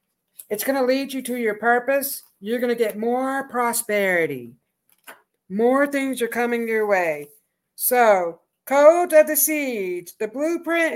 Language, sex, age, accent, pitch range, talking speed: English, female, 50-69, American, 220-280 Hz, 150 wpm